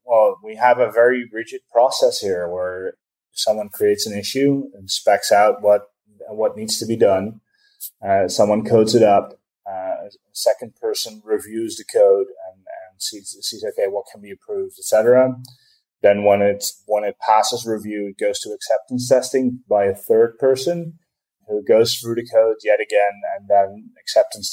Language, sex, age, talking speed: English, male, 20-39, 170 wpm